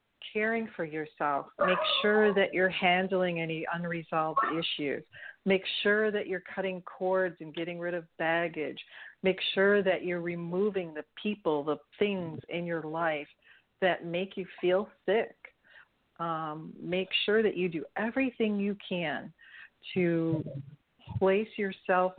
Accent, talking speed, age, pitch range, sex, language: American, 140 wpm, 50-69, 155-185 Hz, female, English